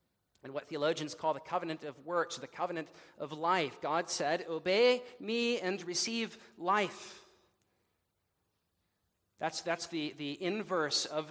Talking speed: 135 wpm